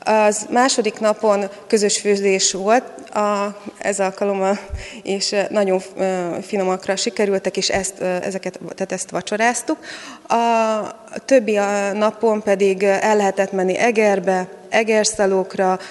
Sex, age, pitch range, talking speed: female, 20-39, 185-210 Hz, 110 wpm